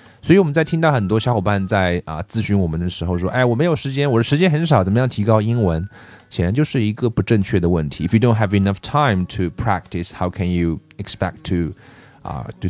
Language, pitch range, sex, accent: Chinese, 90-120 Hz, male, native